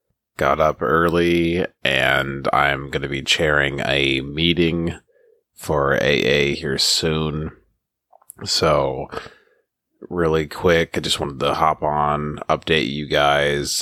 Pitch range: 70-80 Hz